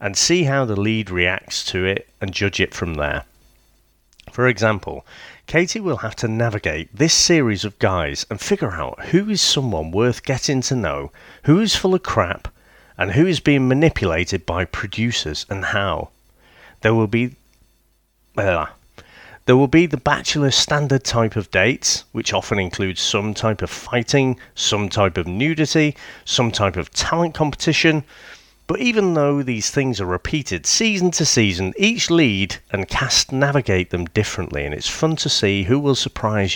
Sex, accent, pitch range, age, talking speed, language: male, British, 95-145 Hz, 40-59, 165 wpm, English